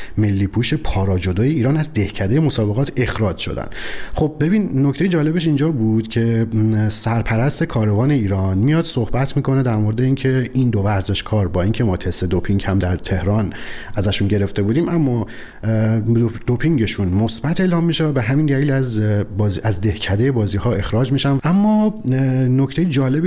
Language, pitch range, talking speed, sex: Persian, 105-140 Hz, 145 wpm, male